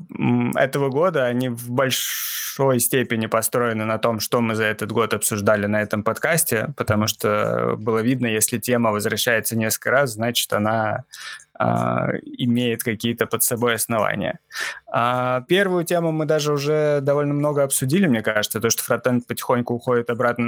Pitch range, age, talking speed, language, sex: 110-130 Hz, 20-39, 150 wpm, Russian, male